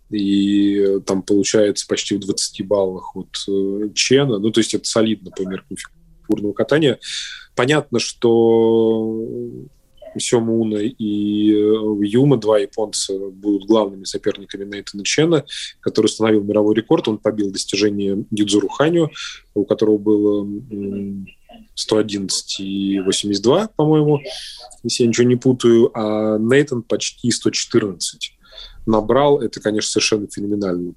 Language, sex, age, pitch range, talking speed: Russian, male, 20-39, 100-120 Hz, 110 wpm